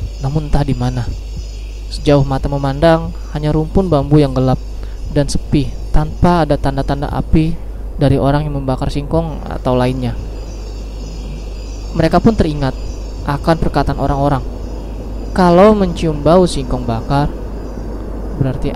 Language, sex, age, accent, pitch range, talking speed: Indonesian, male, 20-39, native, 115-150 Hz, 115 wpm